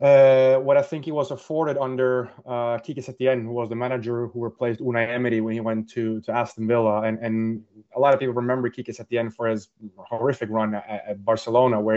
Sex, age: male, 20-39